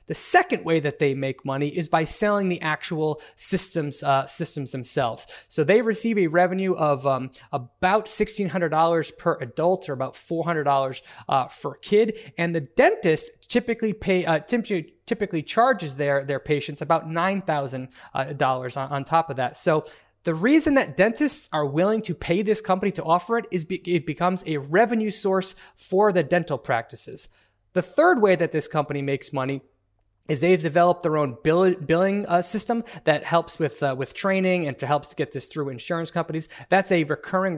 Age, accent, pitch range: 20-39, American, 145-190 Hz